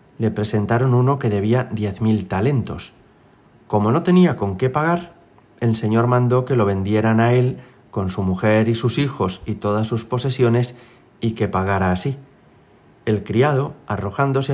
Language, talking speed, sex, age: Spanish, 160 wpm, male, 40-59